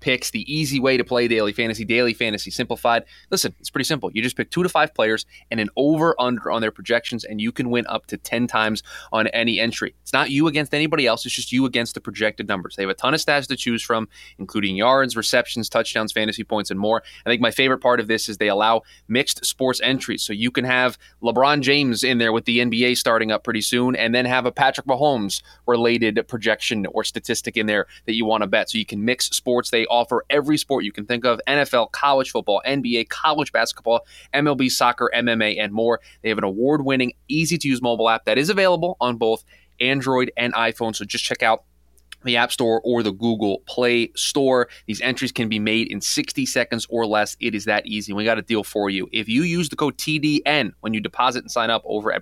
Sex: male